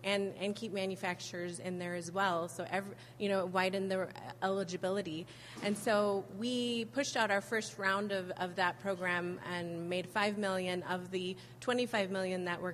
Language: English